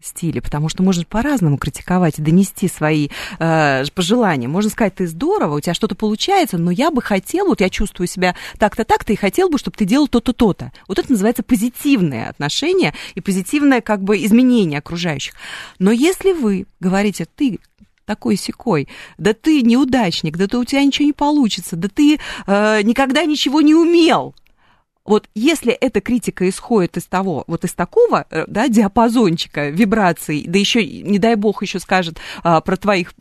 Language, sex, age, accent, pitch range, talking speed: Russian, female, 30-49, native, 180-245 Hz, 170 wpm